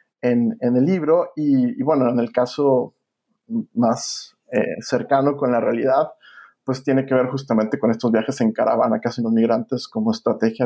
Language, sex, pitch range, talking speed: Spanish, male, 120-140 Hz, 180 wpm